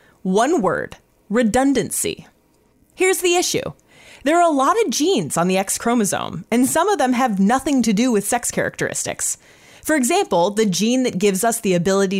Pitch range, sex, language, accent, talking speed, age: 190-270 Hz, female, English, American, 175 wpm, 30-49